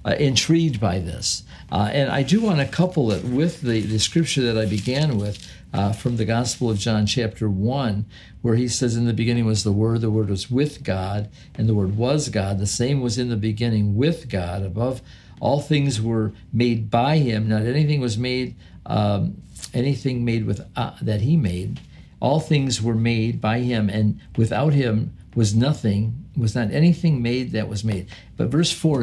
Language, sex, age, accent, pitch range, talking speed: English, male, 50-69, American, 105-130 Hz, 195 wpm